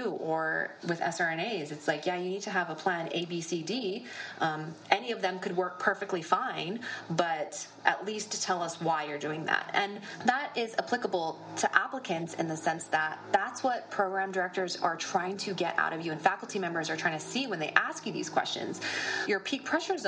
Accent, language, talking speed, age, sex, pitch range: American, English, 210 wpm, 20-39, female, 165-200 Hz